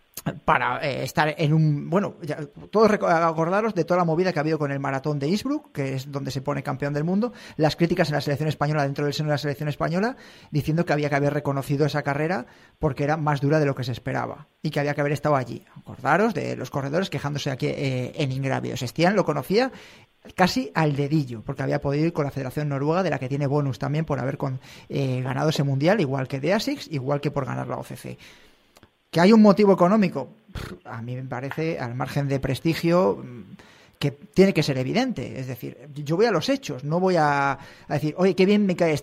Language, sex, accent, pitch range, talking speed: Spanish, male, Spanish, 140-175 Hz, 225 wpm